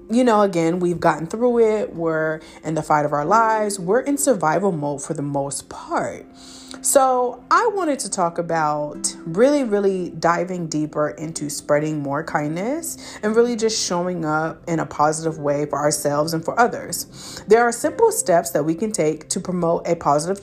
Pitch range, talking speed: 155-215 Hz, 180 wpm